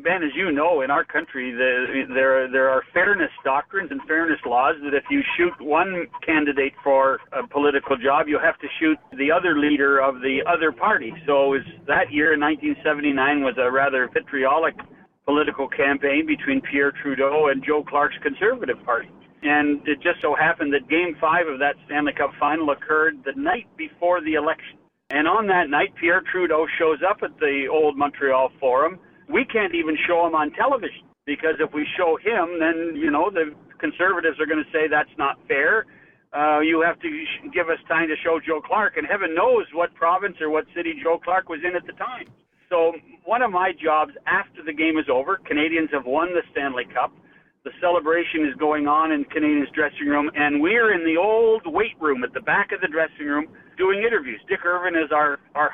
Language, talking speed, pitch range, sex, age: English, 200 wpm, 145-180 Hz, male, 60-79